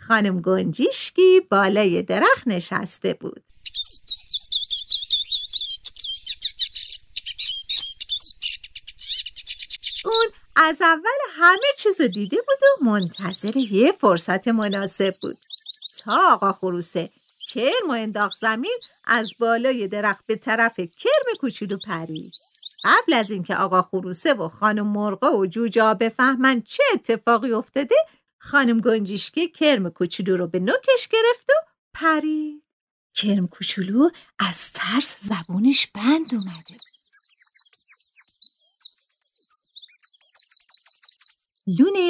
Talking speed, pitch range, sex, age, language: 95 wpm, 190-300 Hz, female, 50-69, Persian